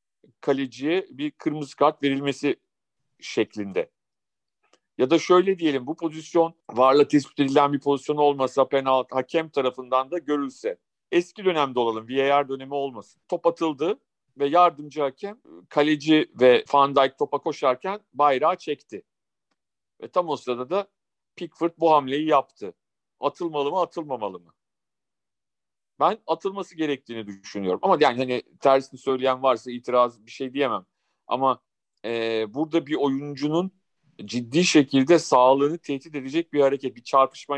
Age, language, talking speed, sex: 50-69, Turkish, 135 wpm, male